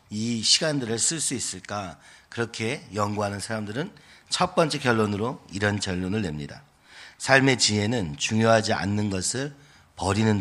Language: Korean